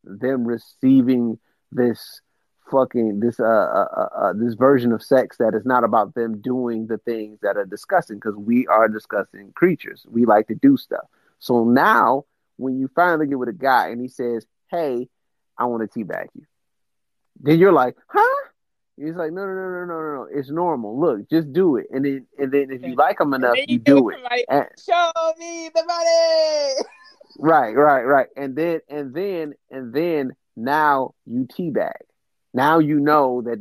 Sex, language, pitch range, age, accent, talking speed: male, English, 120-165 Hz, 30-49, American, 180 wpm